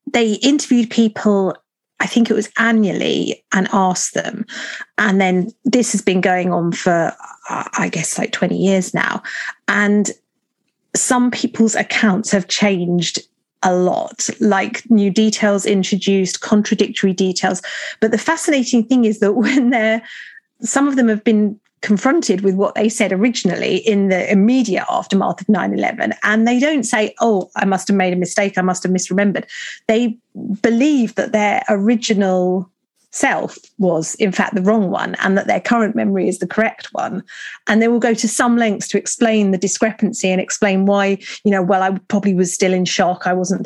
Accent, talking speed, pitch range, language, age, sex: British, 170 wpm, 190-230 Hz, English, 40-59, female